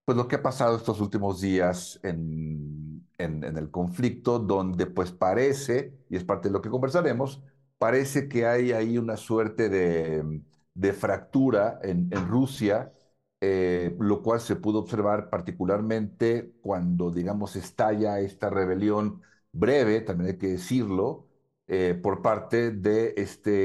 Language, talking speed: Spanish, 145 wpm